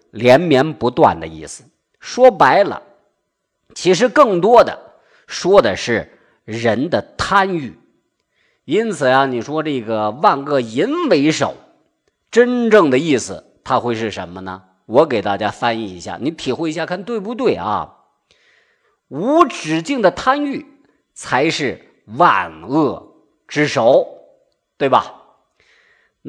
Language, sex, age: Chinese, male, 50-69